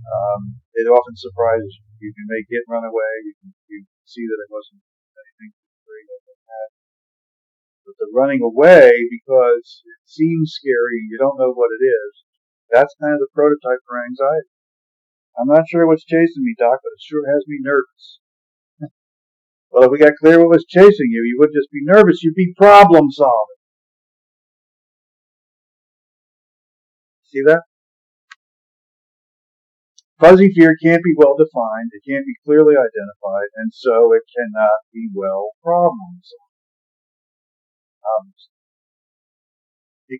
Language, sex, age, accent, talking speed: English, male, 50-69, American, 140 wpm